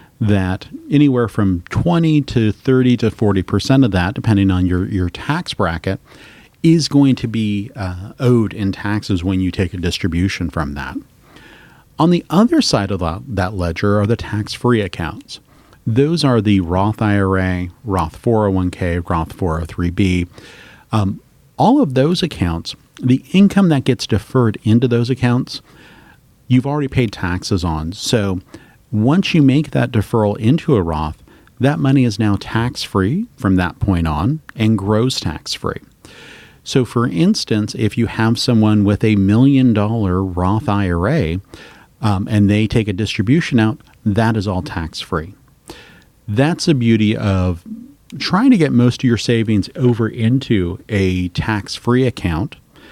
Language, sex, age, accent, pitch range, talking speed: English, male, 40-59, American, 95-130 Hz, 150 wpm